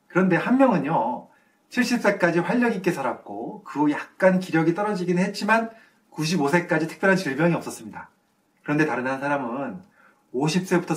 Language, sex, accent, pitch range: Korean, male, native, 145-205 Hz